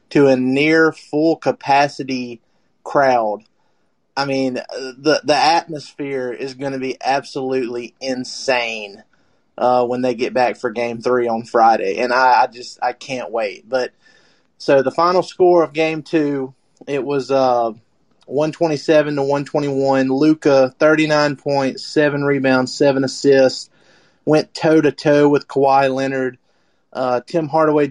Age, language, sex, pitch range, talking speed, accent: 30-49, English, male, 130-150 Hz, 135 wpm, American